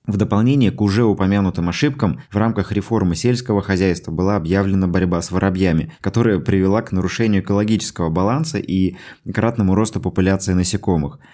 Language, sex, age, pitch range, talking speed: Russian, male, 20-39, 90-120 Hz, 145 wpm